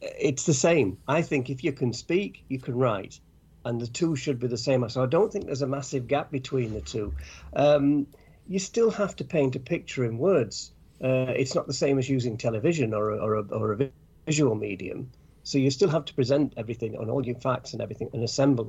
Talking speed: 230 wpm